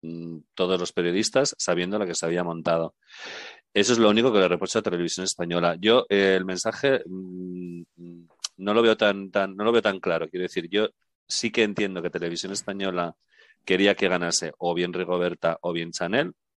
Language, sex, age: Spanish, male, 40-59